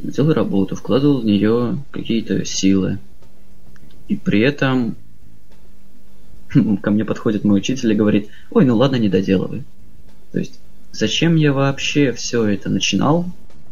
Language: Russian